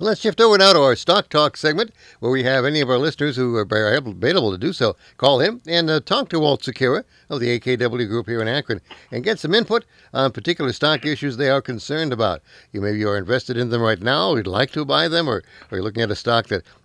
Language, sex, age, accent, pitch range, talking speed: English, male, 60-79, American, 120-155 Hz, 255 wpm